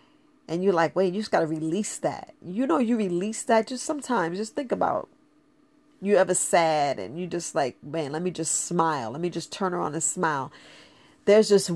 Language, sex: English, female